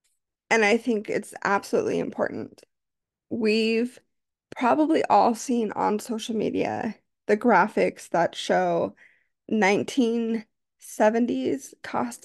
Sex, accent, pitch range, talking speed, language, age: female, American, 205-245 Hz, 95 wpm, English, 20-39